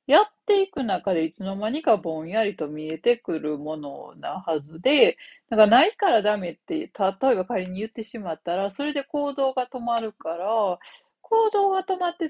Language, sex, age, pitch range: Japanese, female, 40-59, 180-260 Hz